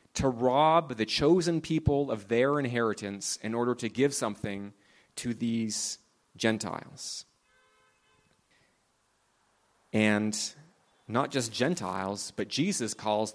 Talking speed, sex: 105 wpm, male